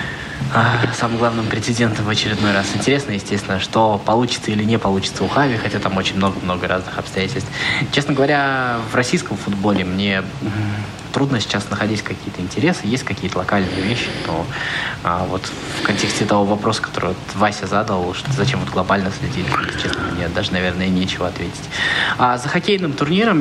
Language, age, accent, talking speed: Russian, 20-39, native, 155 wpm